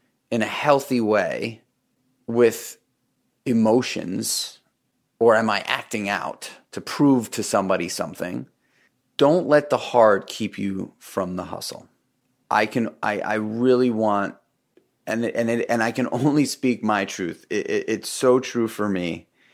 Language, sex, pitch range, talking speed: English, male, 100-120 Hz, 145 wpm